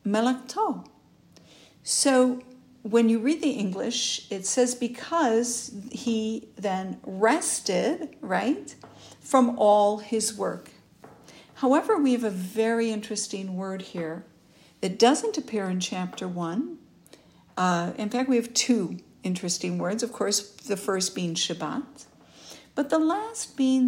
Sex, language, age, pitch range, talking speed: female, English, 60-79, 190-250 Hz, 125 wpm